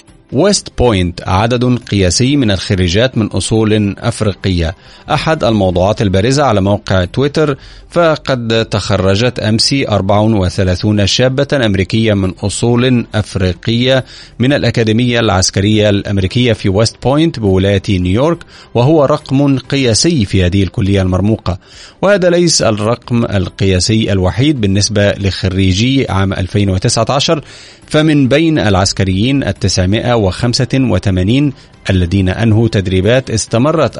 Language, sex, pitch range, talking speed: Arabic, male, 95-130 Hz, 105 wpm